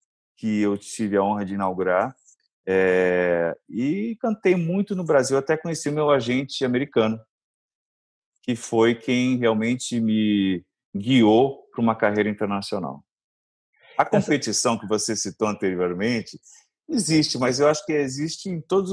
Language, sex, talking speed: Portuguese, male, 140 wpm